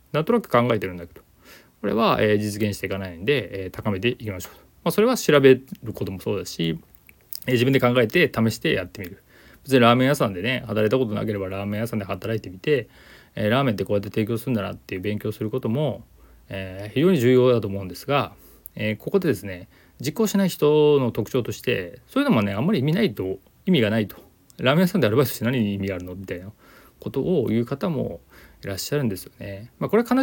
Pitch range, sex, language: 100-135 Hz, male, Japanese